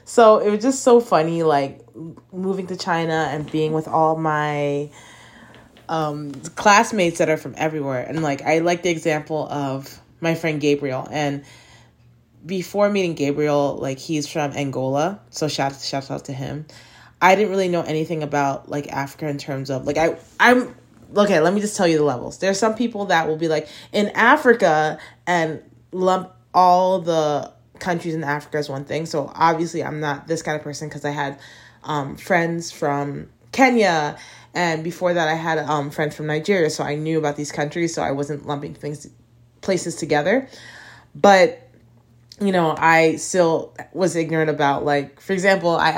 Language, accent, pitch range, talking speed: English, American, 145-175 Hz, 175 wpm